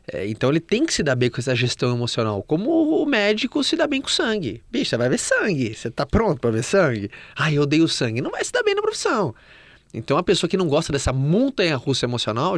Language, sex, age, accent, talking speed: Portuguese, male, 20-39, Brazilian, 245 wpm